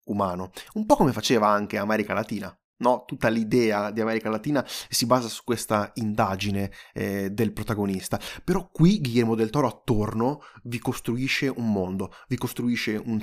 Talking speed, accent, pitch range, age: 160 wpm, native, 105-145 Hz, 20-39